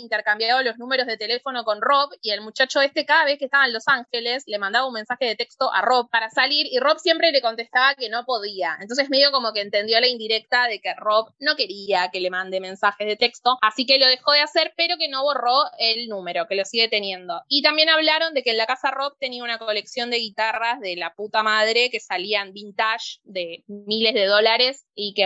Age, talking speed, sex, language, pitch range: 20-39, 230 wpm, female, Spanish, 210-265 Hz